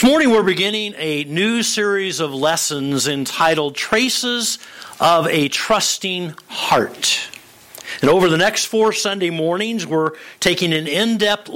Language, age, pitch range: English, 50-69, 160-210 Hz